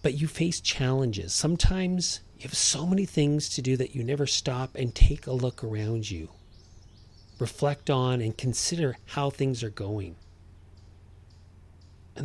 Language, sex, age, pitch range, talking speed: English, male, 40-59, 95-140 Hz, 150 wpm